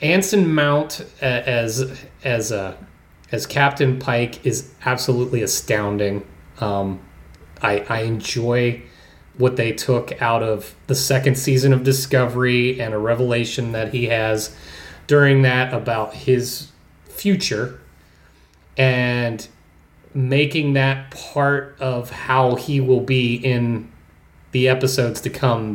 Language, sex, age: English, male, 30-49